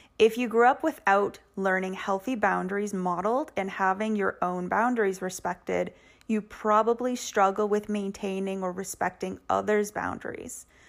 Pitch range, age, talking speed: 185-215 Hz, 30-49, 130 wpm